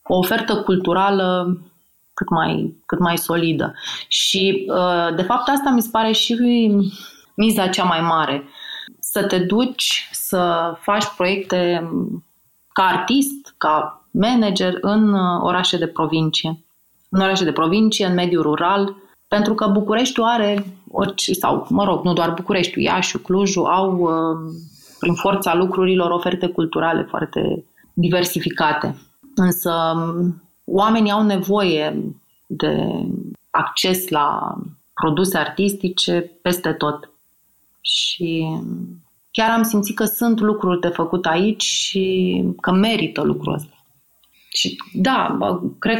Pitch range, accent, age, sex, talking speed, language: 170-205 Hz, native, 30-49, female, 120 wpm, Romanian